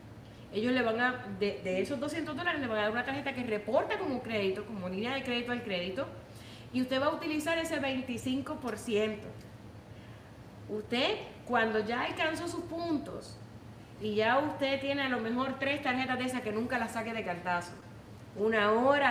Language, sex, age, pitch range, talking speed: Spanish, female, 30-49, 200-265 Hz, 180 wpm